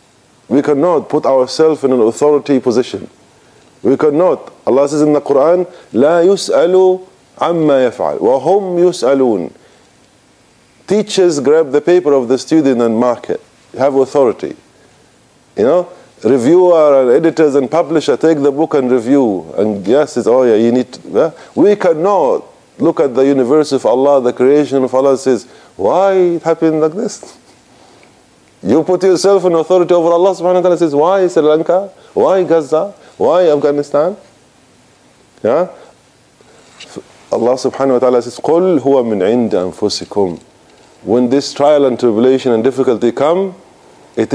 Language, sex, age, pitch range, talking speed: English, male, 50-69, 130-165 Hz, 145 wpm